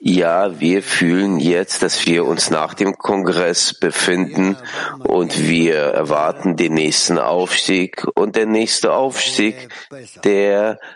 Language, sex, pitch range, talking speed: German, male, 90-120 Hz, 120 wpm